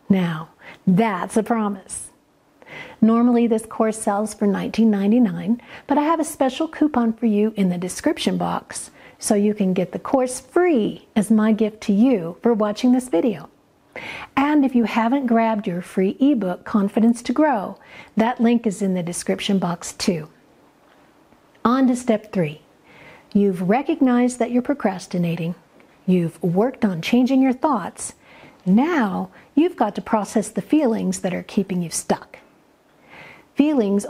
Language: English